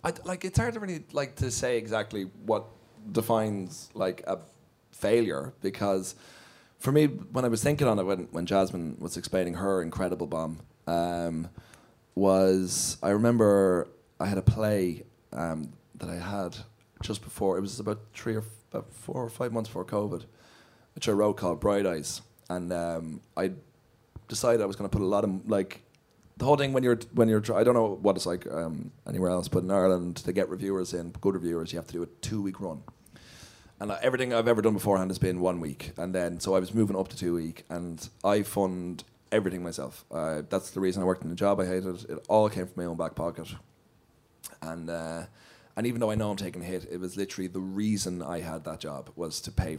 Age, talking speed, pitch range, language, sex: 20-39, 210 wpm, 85-110 Hz, English, male